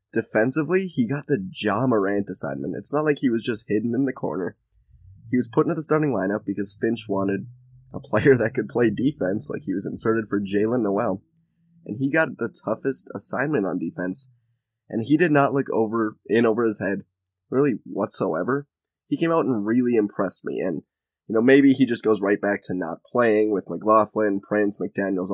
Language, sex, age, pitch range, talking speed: English, male, 20-39, 105-135 Hz, 195 wpm